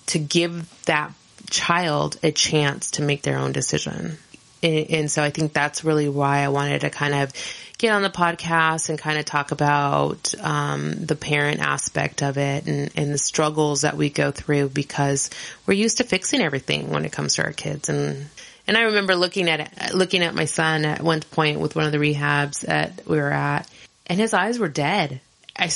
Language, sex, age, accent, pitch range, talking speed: English, female, 30-49, American, 145-165 Hz, 205 wpm